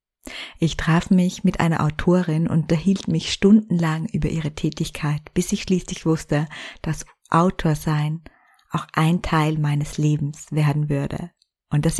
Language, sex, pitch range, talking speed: German, female, 155-190 Hz, 145 wpm